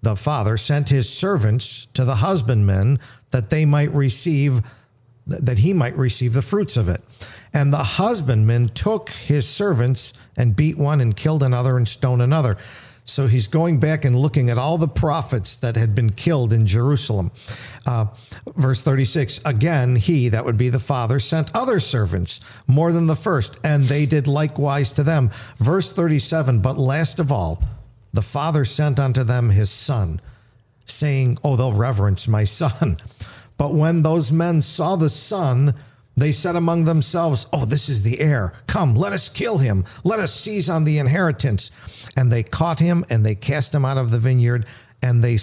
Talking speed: 175 wpm